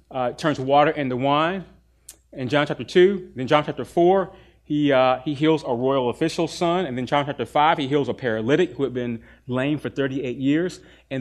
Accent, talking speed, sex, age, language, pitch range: American, 205 wpm, male, 30-49, English, 125-155 Hz